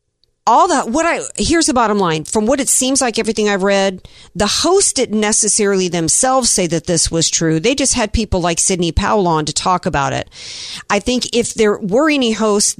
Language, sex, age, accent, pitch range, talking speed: English, female, 50-69, American, 165-210 Hz, 210 wpm